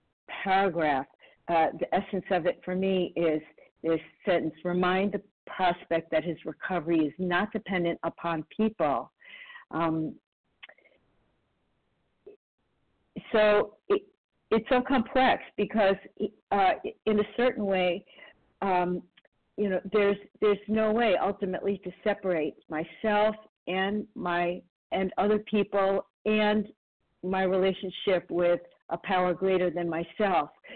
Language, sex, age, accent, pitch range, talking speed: English, female, 50-69, American, 170-205 Hz, 115 wpm